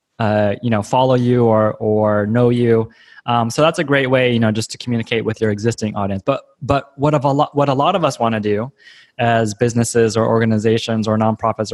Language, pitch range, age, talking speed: English, 110-130 Hz, 20-39, 225 wpm